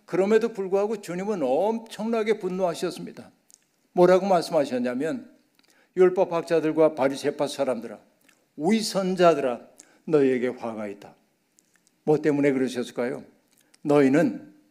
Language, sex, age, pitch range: Korean, male, 60-79, 150-210 Hz